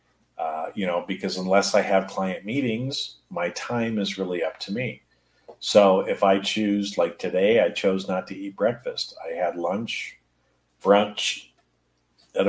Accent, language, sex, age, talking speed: American, English, male, 50-69, 160 wpm